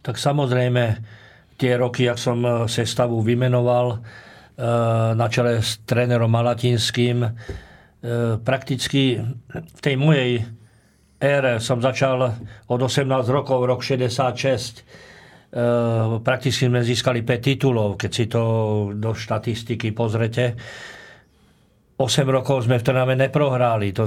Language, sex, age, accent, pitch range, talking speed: Czech, male, 50-69, native, 115-135 Hz, 110 wpm